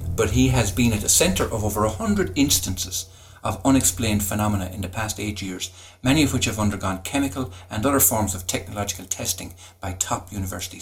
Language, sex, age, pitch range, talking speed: English, male, 60-79, 95-120 Hz, 195 wpm